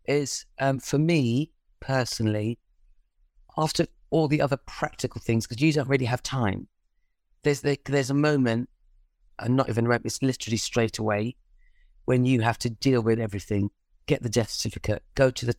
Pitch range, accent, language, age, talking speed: 105-140 Hz, British, English, 30-49, 165 wpm